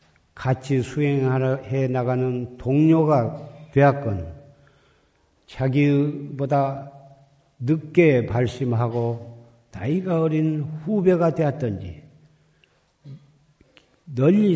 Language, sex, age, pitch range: Korean, male, 50-69, 125-155 Hz